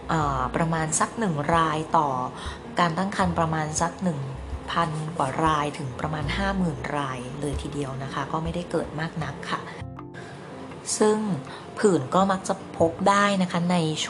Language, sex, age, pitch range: Thai, female, 20-39, 145-180 Hz